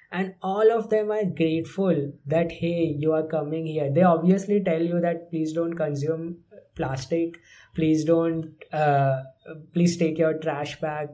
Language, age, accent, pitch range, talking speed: English, 20-39, Indian, 145-165 Hz, 155 wpm